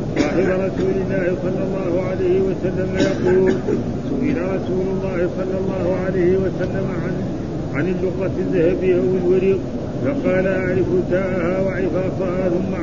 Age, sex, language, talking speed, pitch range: 50-69, male, Arabic, 115 wpm, 180-185 Hz